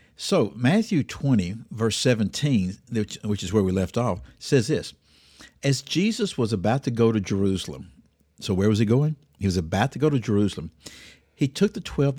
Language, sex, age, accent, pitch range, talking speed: English, male, 60-79, American, 95-130 Hz, 180 wpm